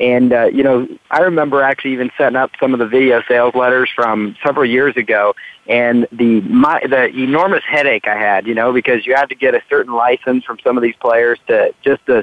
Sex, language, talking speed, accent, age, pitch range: male, English, 225 wpm, American, 40-59, 120-145 Hz